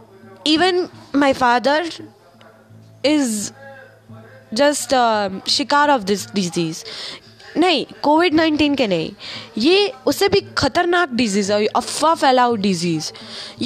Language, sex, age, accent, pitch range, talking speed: Hindi, female, 20-39, native, 230-340 Hz, 105 wpm